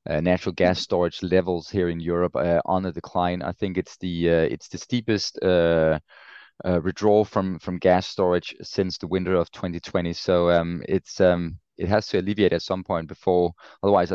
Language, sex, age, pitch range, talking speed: English, male, 20-39, 85-95 Hz, 190 wpm